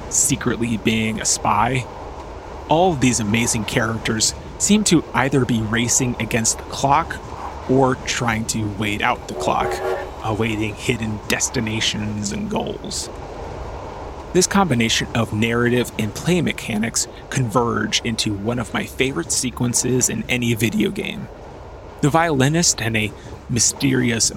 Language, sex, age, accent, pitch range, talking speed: English, male, 30-49, American, 110-130 Hz, 130 wpm